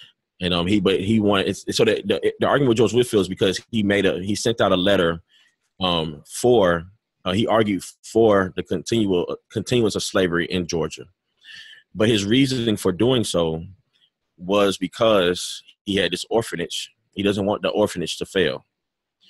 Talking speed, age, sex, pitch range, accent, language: 185 wpm, 20-39, male, 85-100 Hz, American, English